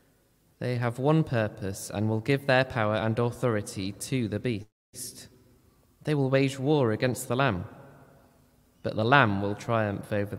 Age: 20-39